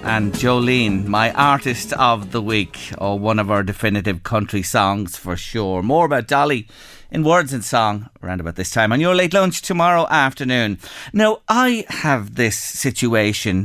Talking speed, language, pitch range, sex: 170 wpm, English, 110-140 Hz, male